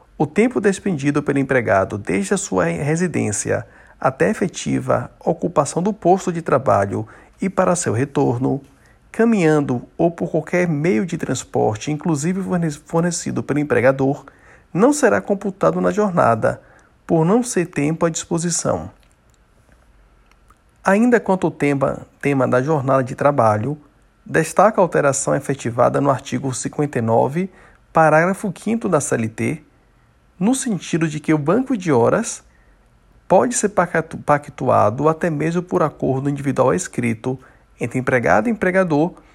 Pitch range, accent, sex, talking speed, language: 130-180 Hz, Brazilian, male, 130 wpm, Portuguese